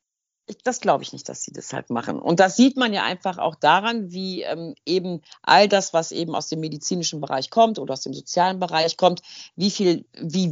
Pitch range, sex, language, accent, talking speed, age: 155-205 Hz, female, German, German, 225 wpm, 50-69